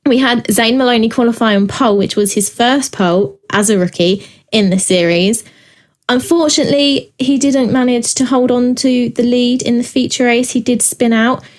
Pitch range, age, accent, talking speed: 200-260 Hz, 20-39, British, 185 wpm